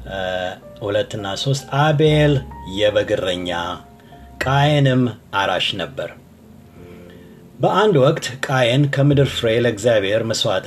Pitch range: 110-150 Hz